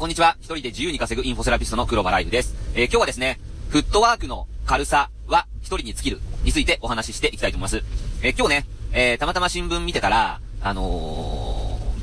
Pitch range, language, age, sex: 100-150 Hz, Japanese, 30-49, male